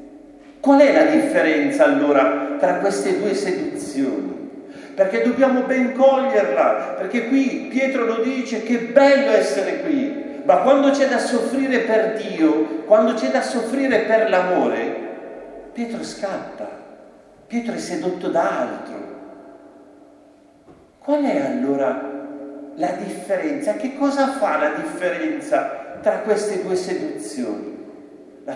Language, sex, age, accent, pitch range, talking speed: Italian, male, 50-69, native, 220-310 Hz, 120 wpm